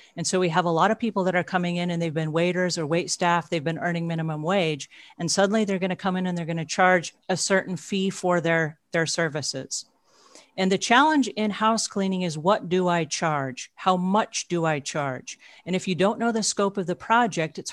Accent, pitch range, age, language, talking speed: American, 170-200 Hz, 40-59, English, 235 wpm